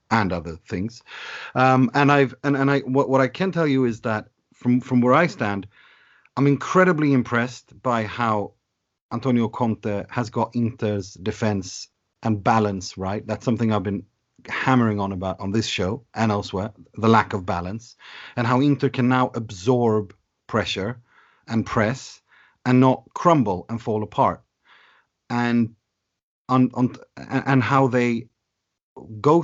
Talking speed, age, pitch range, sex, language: 150 wpm, 40-59, 105-130 Hz, male, English